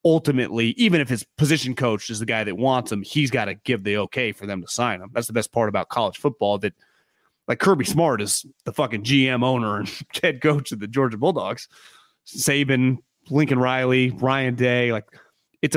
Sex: male